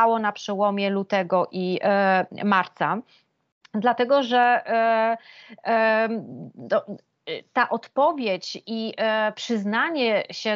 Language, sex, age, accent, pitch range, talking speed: Polish, female, 30-49, native, 195-240 Hz, 90 wpm